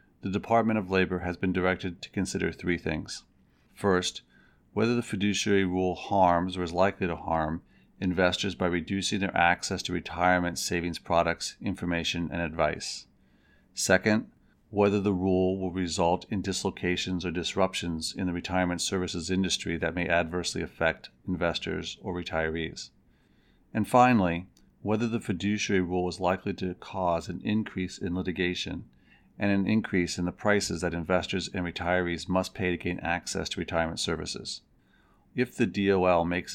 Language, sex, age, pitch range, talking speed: English, male, 40-59, 85-95 Hz, 150 wpm